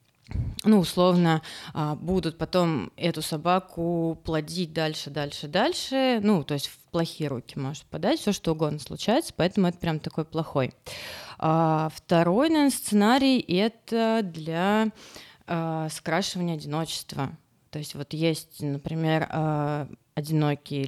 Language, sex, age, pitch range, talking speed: Russian, female, 20-39, 155-205 Hz, 115 wpm